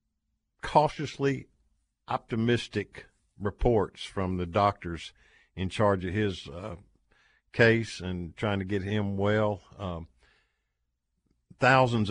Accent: American